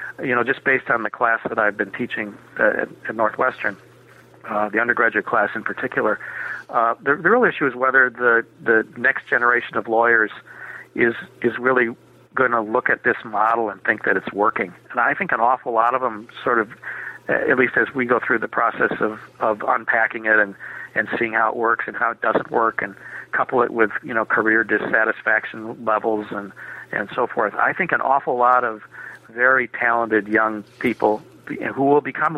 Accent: American